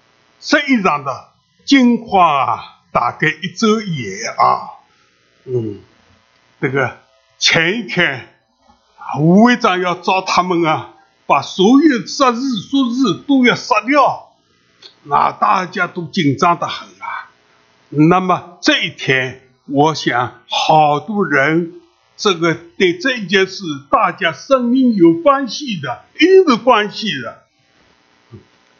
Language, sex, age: English, male, 60-79